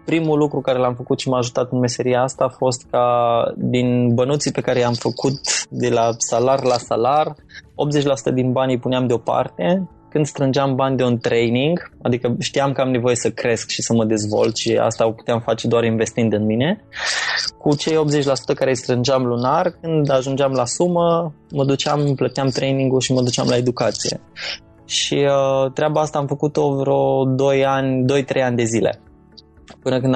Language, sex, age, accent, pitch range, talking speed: Romanian, male, 20-39, native, 120-145 Hz, 180 wpm